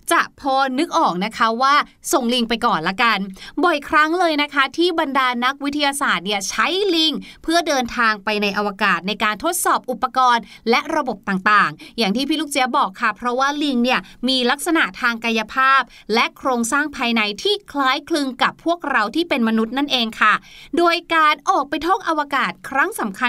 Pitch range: 230-305 Hz